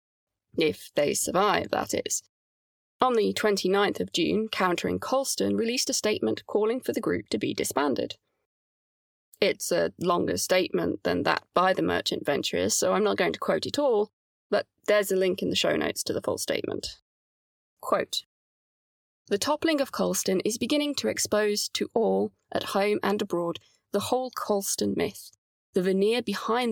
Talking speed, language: 165 wpm, English